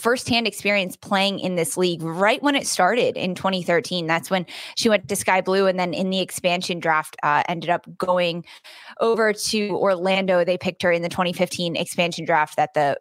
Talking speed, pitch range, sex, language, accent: 200 wpm, 165-195 Hz, female, English, American